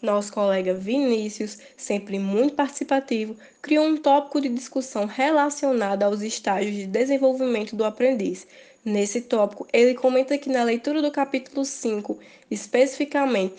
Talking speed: 130 wpm